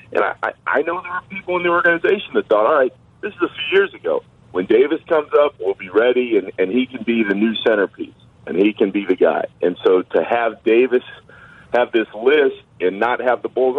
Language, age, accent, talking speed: English, 40-59, American, 235 wpm